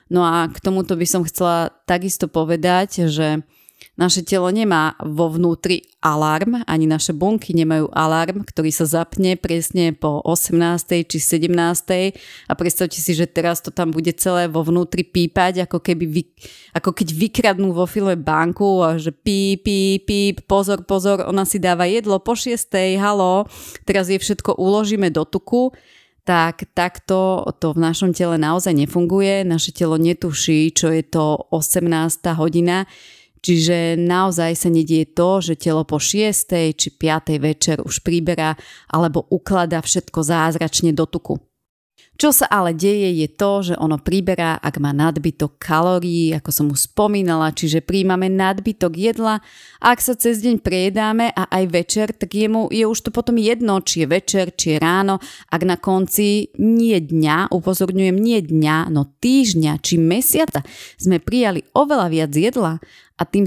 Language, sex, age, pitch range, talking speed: Slovak, female, 30-49, 165-195 Hz, 160 wpm